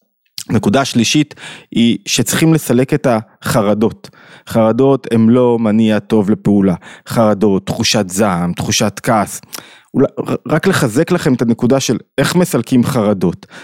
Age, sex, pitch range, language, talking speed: 20-39, male, 115-165 Hz, Hebrew, 120 wpm